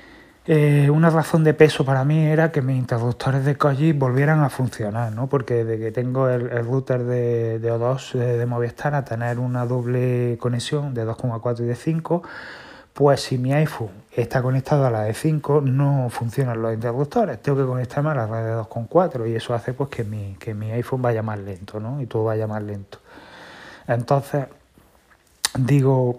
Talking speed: 185 wpm